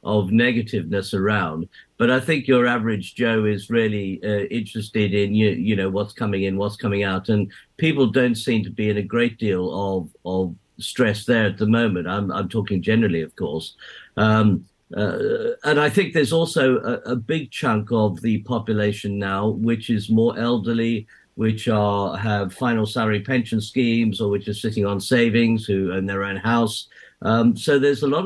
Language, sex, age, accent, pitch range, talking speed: English, male, 50-69, British, 100-115 Hz, 185 wpm